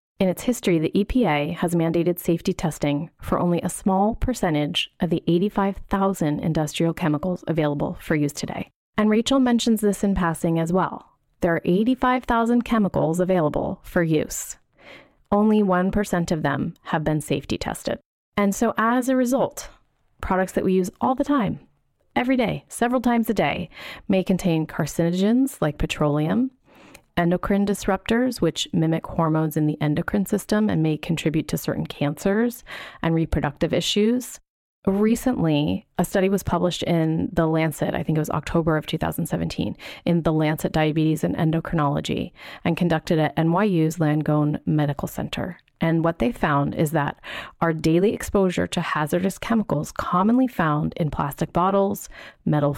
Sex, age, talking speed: female, 30-49, 150 wpm